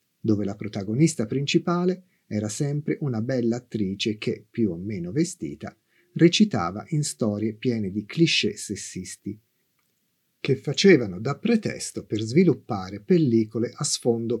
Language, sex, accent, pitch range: Italian, male, native, 110-165 Hz